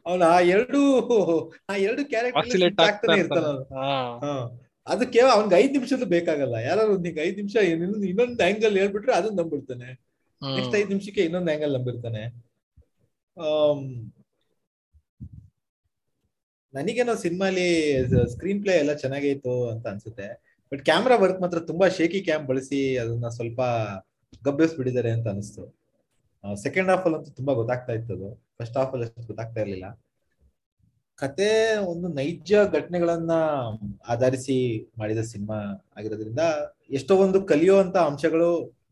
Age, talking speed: 30-49, 115 wpm